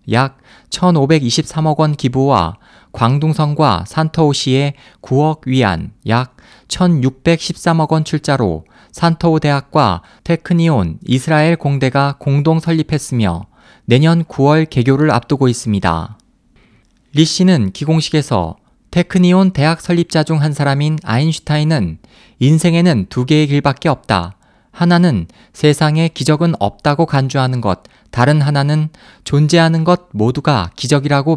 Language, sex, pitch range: Korean, male, 125-160 Hz